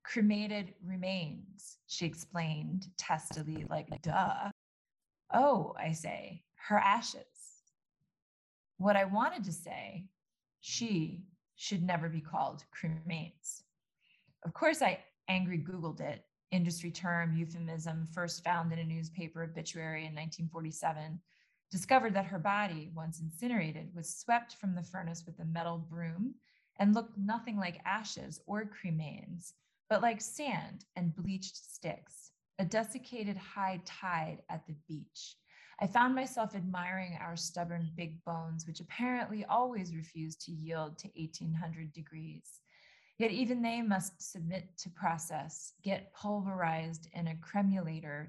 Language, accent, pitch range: English, American, 165-195 Hz